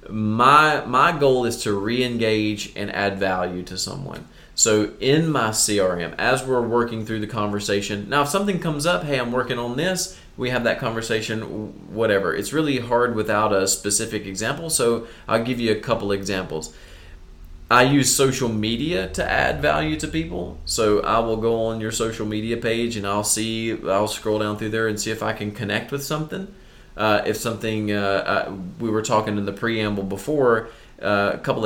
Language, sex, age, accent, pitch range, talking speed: English, male, 30-49, American, 100-120 Hz, 185 wpm